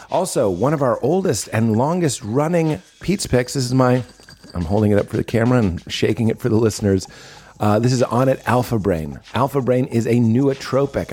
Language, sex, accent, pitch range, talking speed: English, male, American, 100-130 Hz, 200 wpm